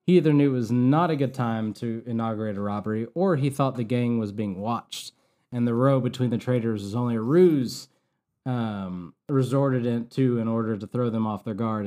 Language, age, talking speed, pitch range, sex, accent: English, 20-39, 215 wpm, 105-130 Hz, male, American